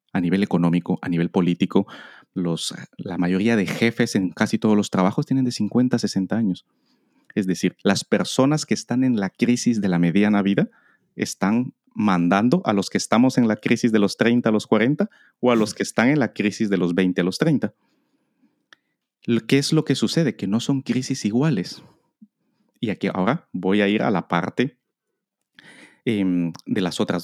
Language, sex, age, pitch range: Spanish, male, 30-49, 95-130 Hz